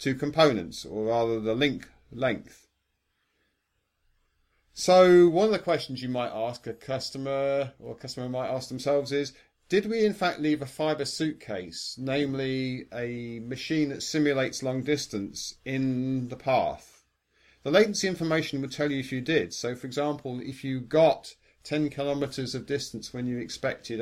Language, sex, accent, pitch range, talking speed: English, male, British, 115-150 Hz, 160 wpm